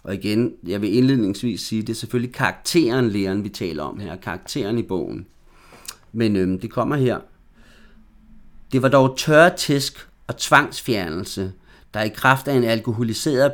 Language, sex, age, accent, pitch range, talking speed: Danish, male, 30-49, native, 100-130 Hz, 165 wpm